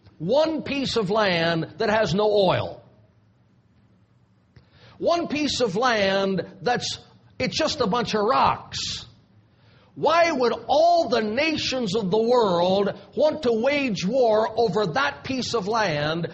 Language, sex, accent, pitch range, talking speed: English, male, American, 195-280 Hz, 130 wpm